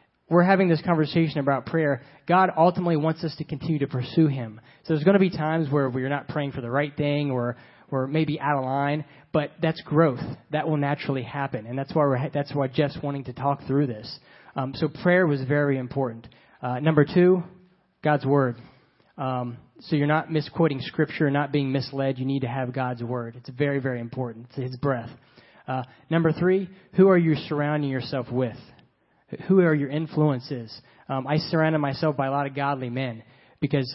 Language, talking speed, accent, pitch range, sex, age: English, 195 wpm, American, 130-155 Hz, male, 30-49